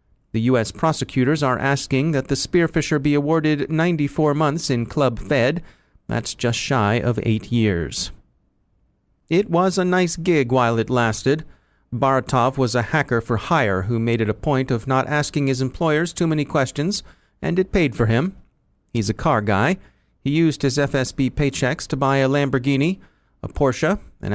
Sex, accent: male, American